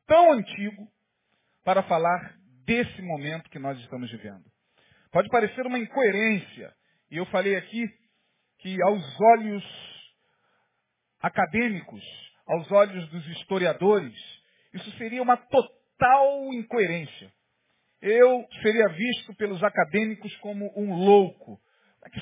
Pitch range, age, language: 180-230 Hz, 40-59, Portuguese